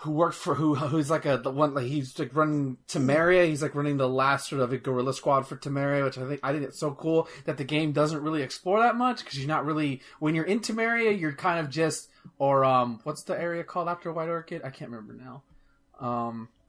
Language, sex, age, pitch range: English, male, 30-49, 125-155 Hz